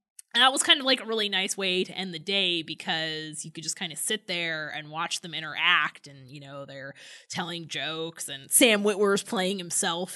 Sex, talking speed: female, 220 wpm